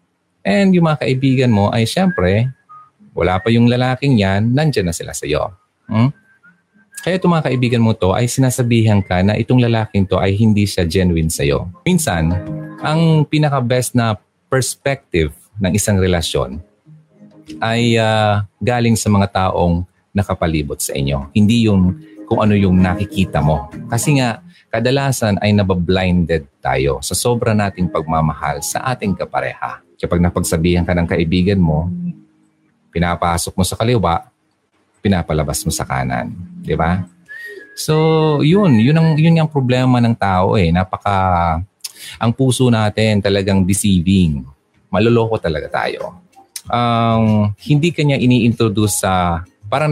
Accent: native